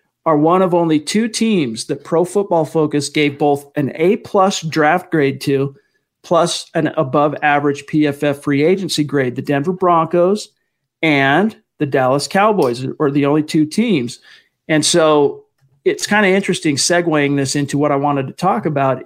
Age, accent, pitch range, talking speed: 40-59, American, 145-170 Hz, 165 wpm